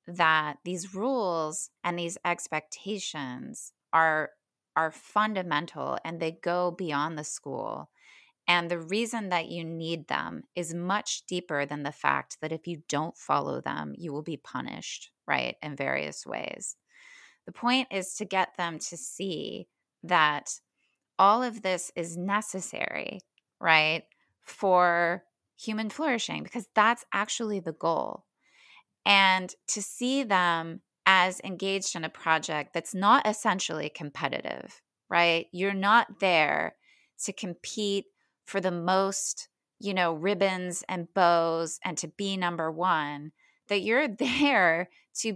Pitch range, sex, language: 170-210 Hz, female, English